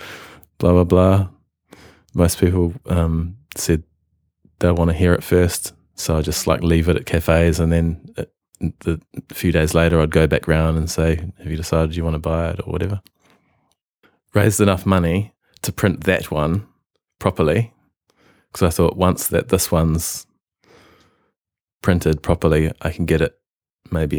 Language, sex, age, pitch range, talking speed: English, male, 20-39, 80-90 Hz, 170 wpm